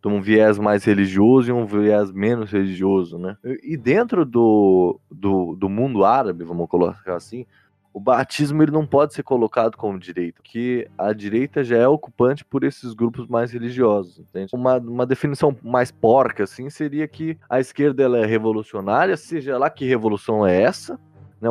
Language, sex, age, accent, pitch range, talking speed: Portuguese, male, 20-39, Brazilian, 100-140 Hz, 170 wpm